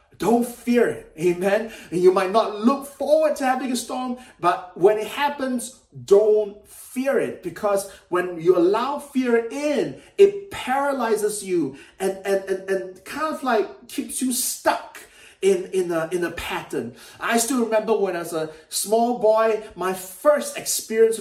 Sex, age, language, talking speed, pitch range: male, 30-49, English, 165 wpm, 195-255 Hz